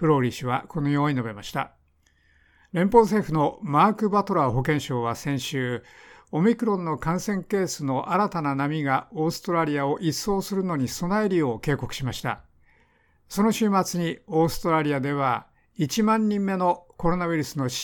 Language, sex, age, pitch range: Japanese, male, 60-79, 135-180 Hz